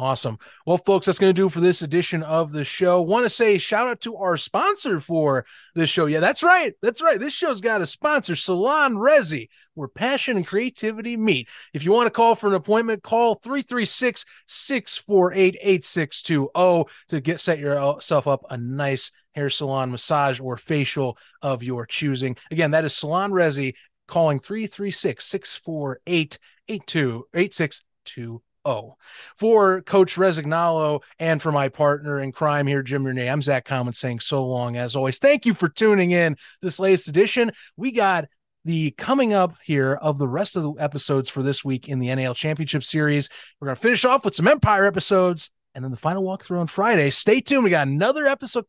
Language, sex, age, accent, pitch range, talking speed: English, male, 30-49, American, 140-205 Hz, 175 wpm